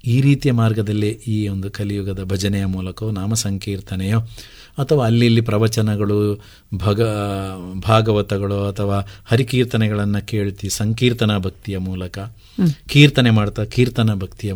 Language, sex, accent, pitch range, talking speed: Kannada, male, native, 105-130 Hz, 105 wpm